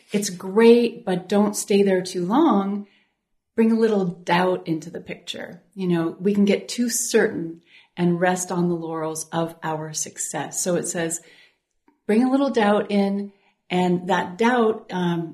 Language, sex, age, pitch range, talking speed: English, female, 30-49, 170-200 Hz, 165 wpm